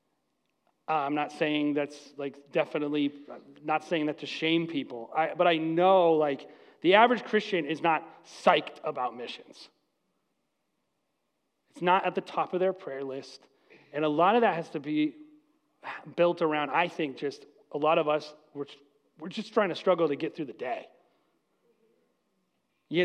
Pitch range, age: 150-205 Hz, 30-49